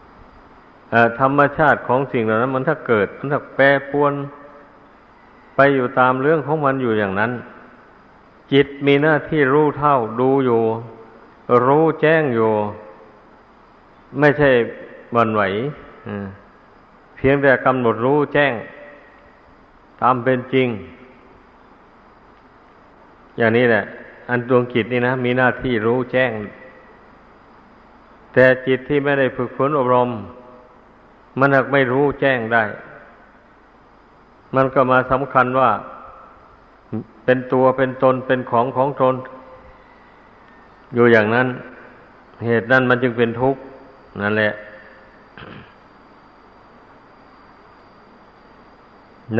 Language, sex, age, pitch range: Thai, male, 50-69, 115-135 Hz